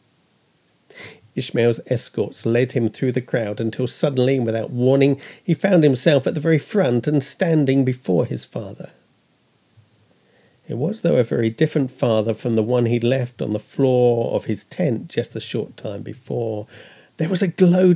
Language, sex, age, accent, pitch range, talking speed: English, male, 50-69, British, 130-190 Hz, 165 wpm